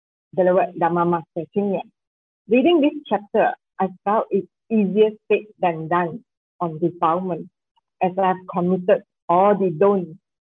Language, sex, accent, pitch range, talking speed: English, female, Malaysian, 180-210 Hz, 120 wpm